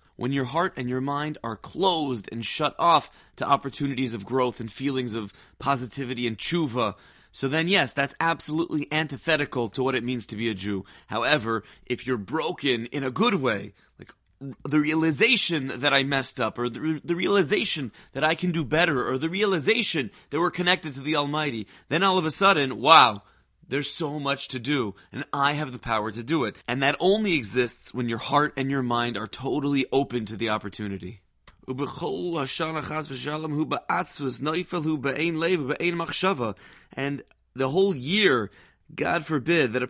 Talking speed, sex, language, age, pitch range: 165 wpm, male, English, 30-49, 125-160 Hz